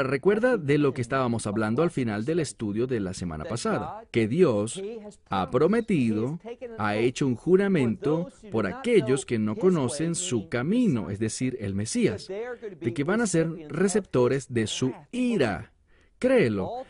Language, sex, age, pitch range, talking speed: English, male, 40-59, 110-175 Hz, 155 wpm